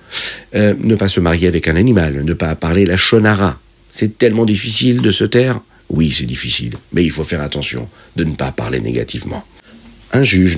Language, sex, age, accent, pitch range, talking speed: French, male, 50-69, French, 85-115 Hz, 195 wpm